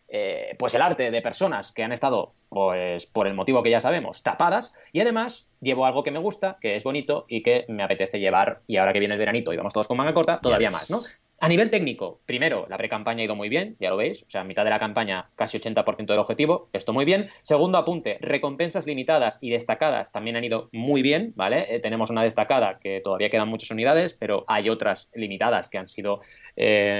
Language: Spanish